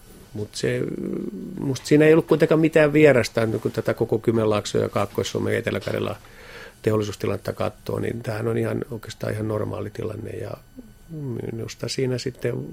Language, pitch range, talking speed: Finnish, 105-120 Hz, 130 wpm